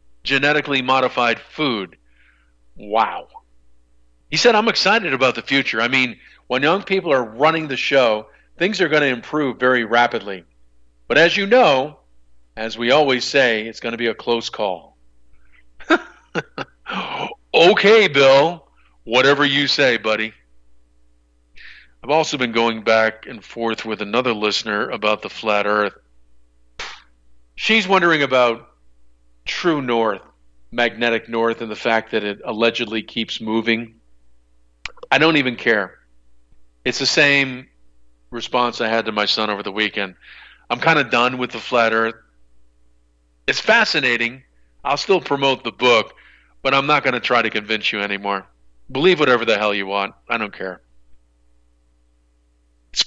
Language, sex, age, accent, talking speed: English, male, 50-69, American, 145 wpm